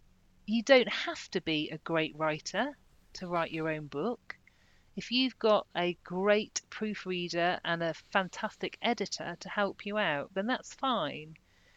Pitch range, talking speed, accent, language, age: 160-210 Hz, 155 wpm, British, English, 40-59